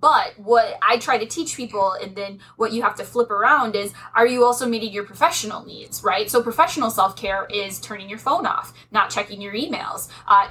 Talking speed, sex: 210 wpm, female